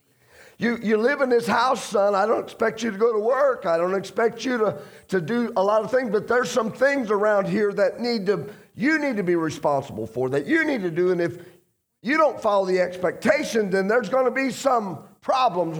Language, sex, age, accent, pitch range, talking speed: English, male, 50-69, American, 155-220 Hz, 230 wpm